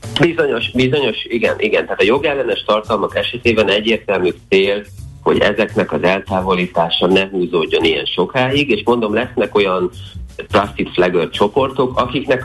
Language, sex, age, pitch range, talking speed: Hungarian, male, 30-49, 95-115 Hz, 130 wpm